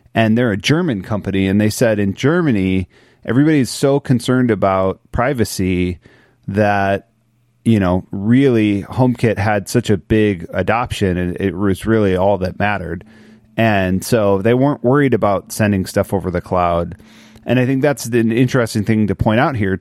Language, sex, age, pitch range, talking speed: English, male, 30-49, 95-115 Hz, 165 wpm